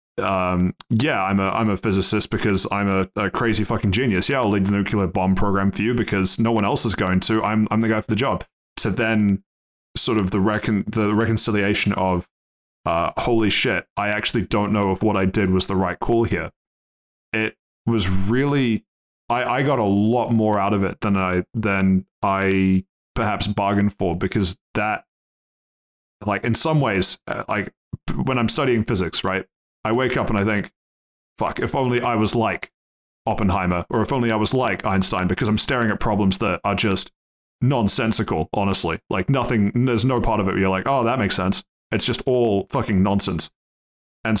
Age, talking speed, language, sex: 20-39, 195 wpm, English, male